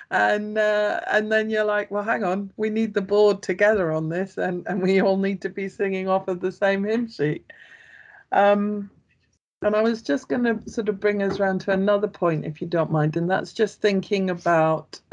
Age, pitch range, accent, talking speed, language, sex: 50-69, 165-200 Hz, British, 215 wpm, English, female